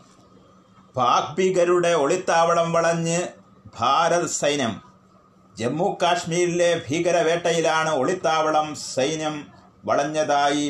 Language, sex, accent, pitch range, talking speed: Malayalam, male, native, 145-170 Hz, 60 wpm